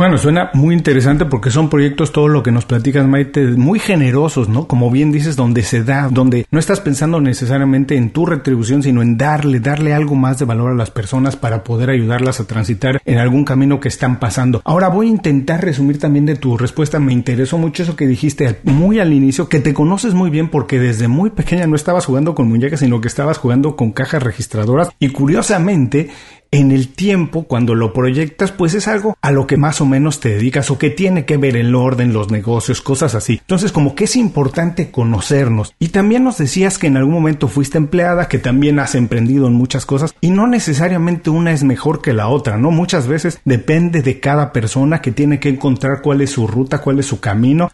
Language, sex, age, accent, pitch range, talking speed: Spanish, male, 40-59, Mexican, 125-155 Hz, 215 wpm